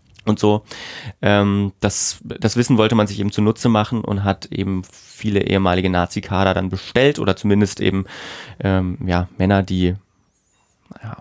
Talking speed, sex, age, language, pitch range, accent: 150 wpm, male, 30-49, German, 100-115 Hz, German